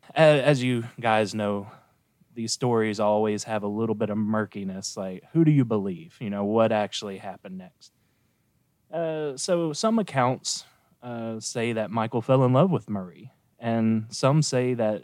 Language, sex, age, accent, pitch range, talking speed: English, male, 20-39, American, 110-145 Hz, 165 wpm